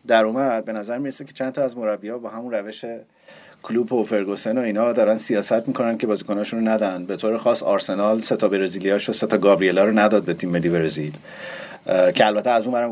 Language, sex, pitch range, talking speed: Persian, male, 100-120 Hz, 220 wpm